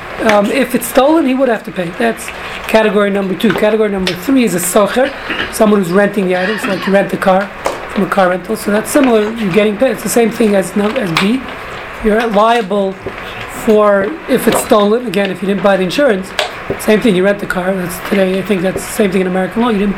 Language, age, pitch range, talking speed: English, 40-59, 195-230 Hz, 235 wpm